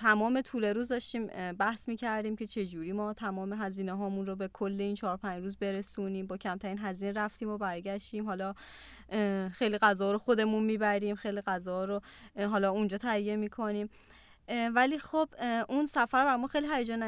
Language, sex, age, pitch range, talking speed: Persian, female, 20-39, 195-225 Hz, 165 wpm